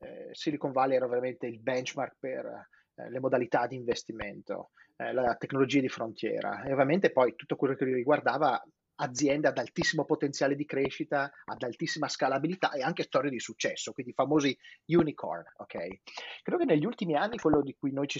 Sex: male